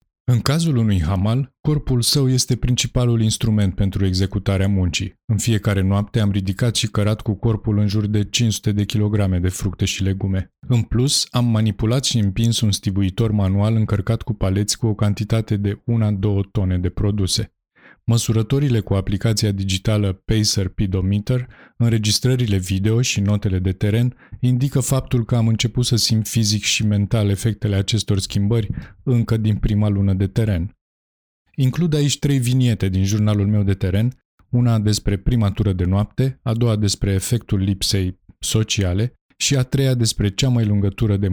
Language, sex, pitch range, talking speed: Romanian, male, 100-115 Hz, 165 wpm